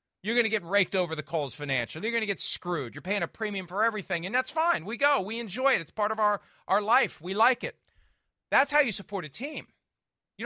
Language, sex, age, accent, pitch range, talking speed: English, male, 40-59, American, 140-195 Hz, 250 wpm